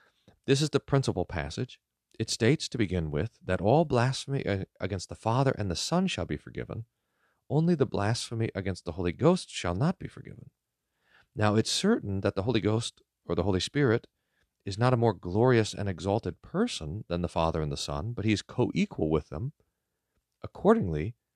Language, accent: English, American